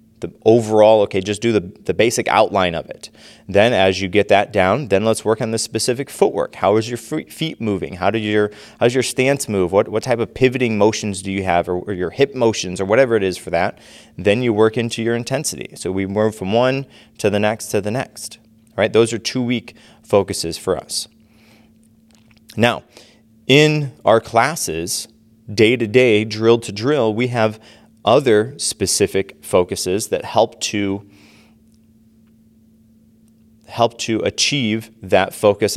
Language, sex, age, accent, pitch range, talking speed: English, male, 30-49, American, 105-120 Hz, 165 wpm